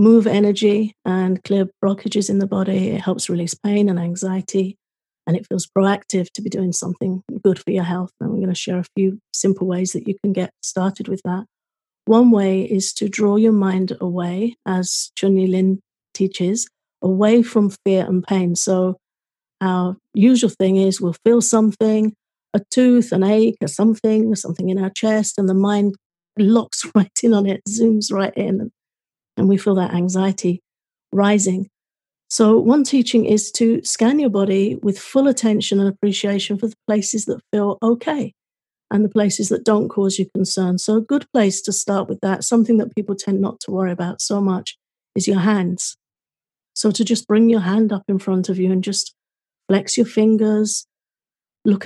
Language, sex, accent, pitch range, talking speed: English, female, British, 190-220 Hz, 185 wpm